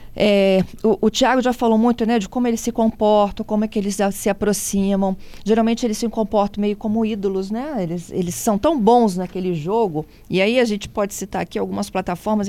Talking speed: 210 wpm